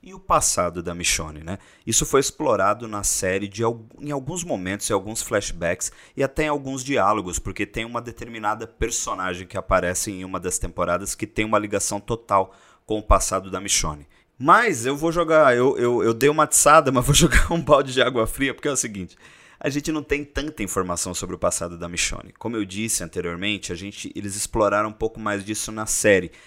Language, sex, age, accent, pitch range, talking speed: Portuguese, male, 30-49, Brazilian, 95-120 Hz, 205 wpm